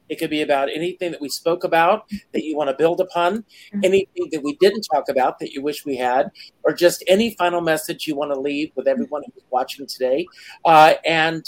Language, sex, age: English, male, 40-59